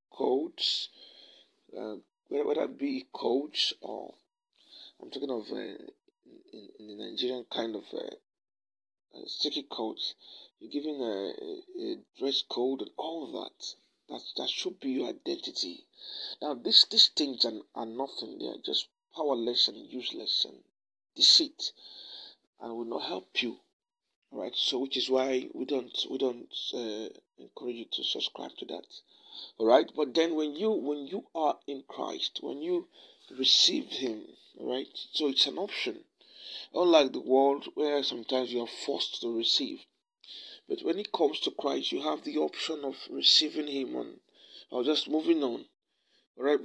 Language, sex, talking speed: English, male, 155 wpm